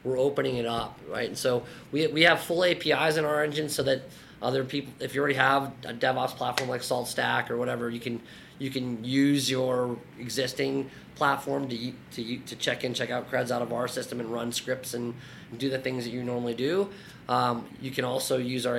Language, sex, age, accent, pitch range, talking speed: English, male, 20-39, American, 120-135 Hz, 220 wpm